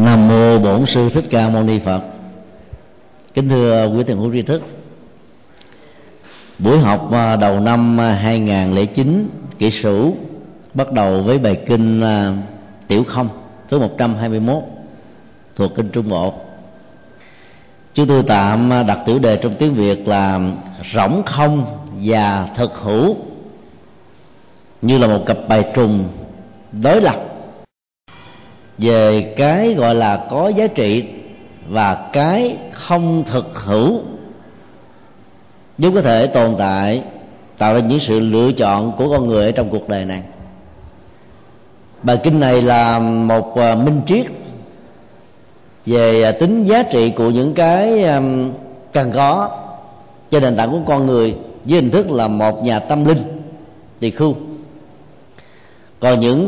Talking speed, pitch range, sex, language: 130 wpm, 110-140 Hz, male, Vietnamese